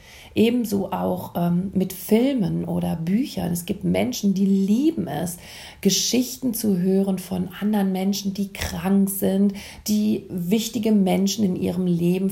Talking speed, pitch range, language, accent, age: 135 wpm, 195-240 Hz, German, German, 40-59